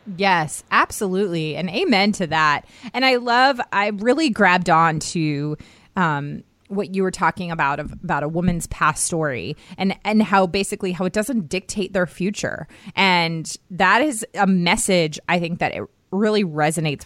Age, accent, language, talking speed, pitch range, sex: 20-39, American, English, 165 wpm, 155-190 Hz, female